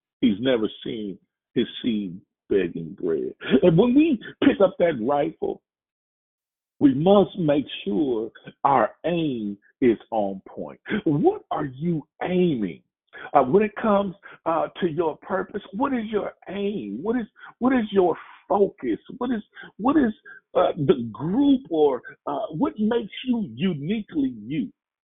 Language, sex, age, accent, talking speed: English, male, 50-69, American, 140 wpm